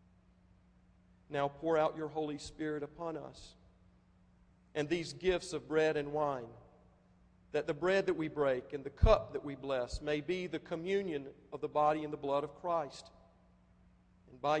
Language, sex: English, male